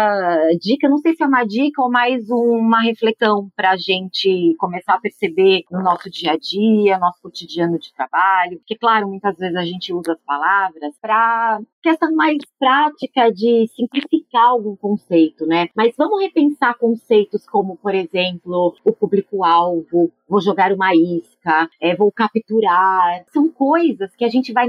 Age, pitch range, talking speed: 30-49, 190-255 Hz, 160 wpm